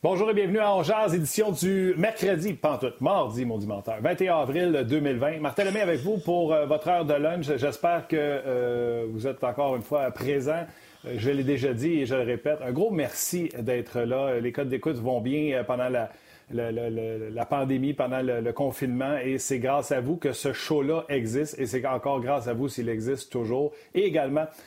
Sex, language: male, French